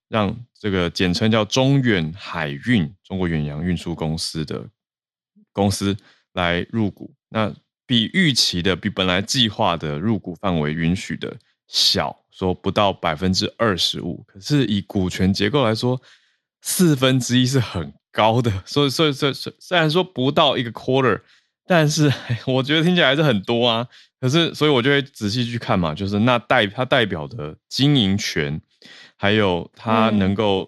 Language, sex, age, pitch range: Chinese, male, 20-39, 95-130 Hz